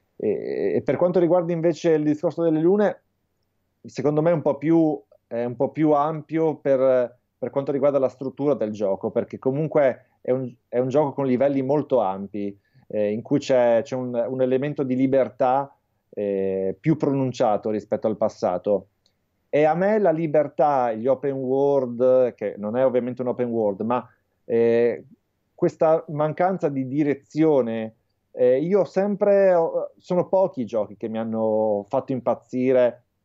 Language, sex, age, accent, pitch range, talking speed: Italian, male, 30-49, native, 115-155 Hz, 150 wpm